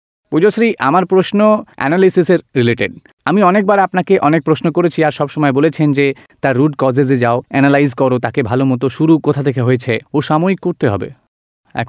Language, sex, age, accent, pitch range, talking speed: Gujarati, male, 30-49, native, 115-160 Hz, 110 wpm